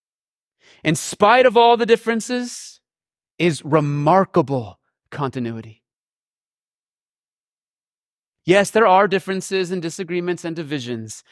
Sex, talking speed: male, 90 wpm